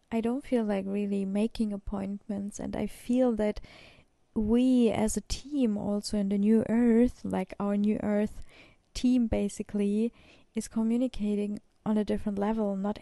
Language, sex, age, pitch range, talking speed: German, female, 20-39, 205-240 Hz, 150 wpm